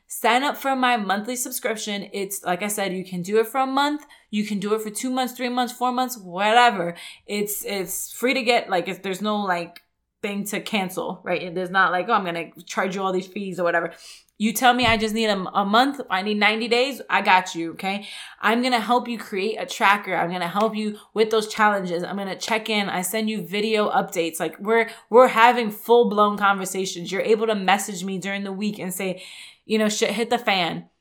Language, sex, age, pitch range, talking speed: English, female, 20-39, 200-245 Hz, 240 wpm